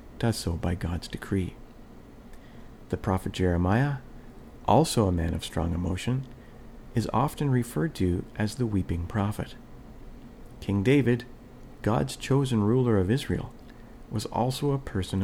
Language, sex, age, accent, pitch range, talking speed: English, male, 40-59, American, 90-120 Hz, 130 wpm